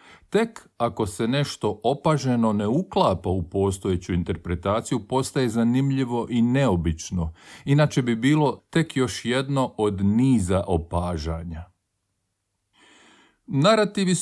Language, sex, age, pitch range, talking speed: Croatian, male, 50-69, 95-140 Hz, 100 wpm